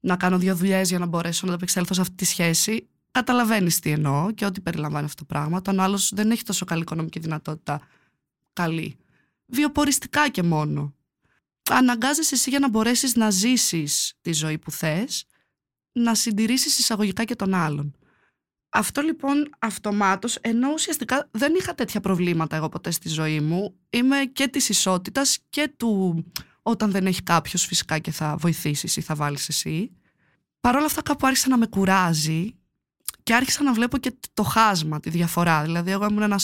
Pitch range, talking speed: 165-240 Hz, 170 wpm